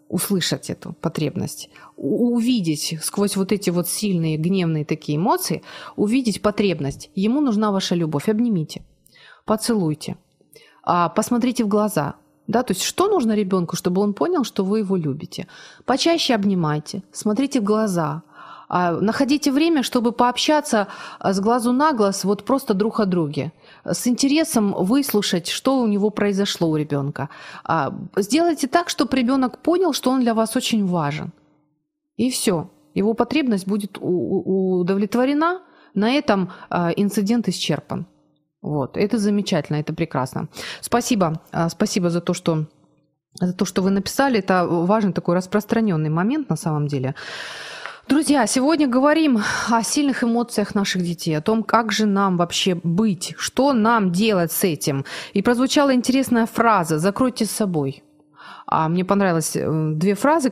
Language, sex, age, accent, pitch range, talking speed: Ukrainian, female, 30-49, native, 170-235 Hz, 135 wpm